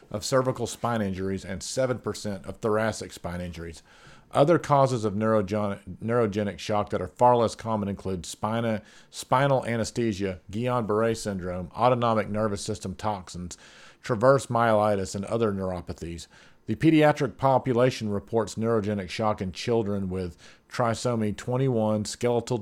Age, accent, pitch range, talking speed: 40-59, American, 100-120 Hz, 120 wpm